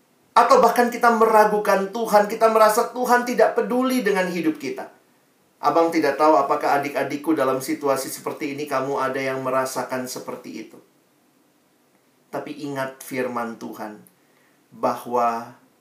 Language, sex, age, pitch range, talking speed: Indonesian, male, 40-59, 150-210 Hz, 125 wpm